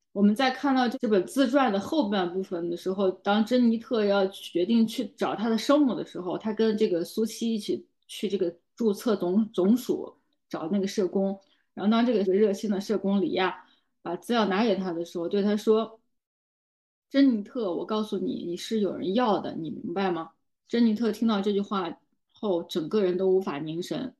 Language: Chinese